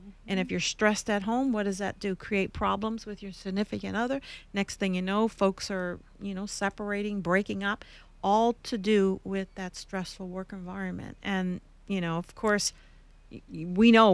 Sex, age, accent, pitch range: female, 50-69, American, 190-225 Hz